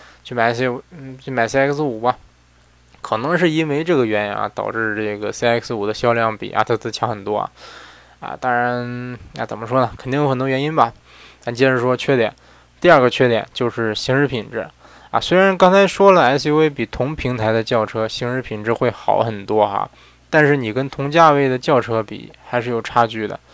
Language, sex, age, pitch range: Chinese, male, 20-39, 110-135 Hz